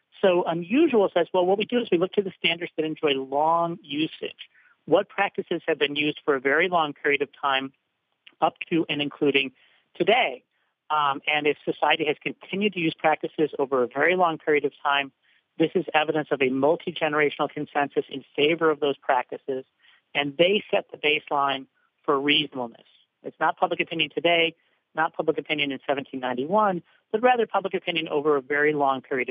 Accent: American